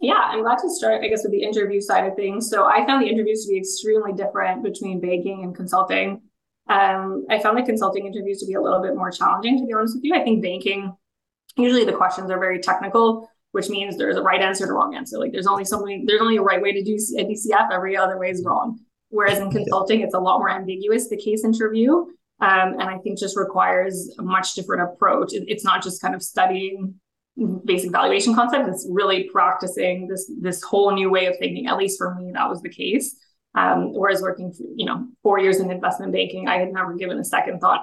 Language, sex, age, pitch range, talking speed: English, female, 20-39, 190-220 Hz, 225 wpm